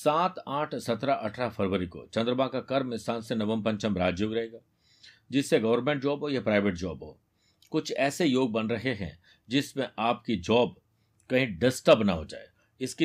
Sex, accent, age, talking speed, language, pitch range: male, native, 50-69, 175 wpm, Hindi, 110-135 Hz